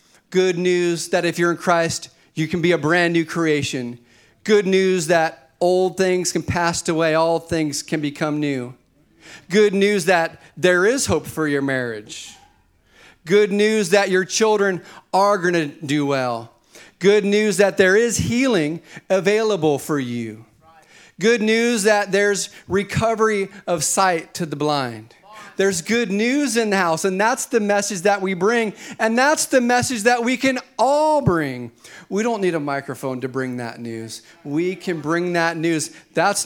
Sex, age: male, 40-59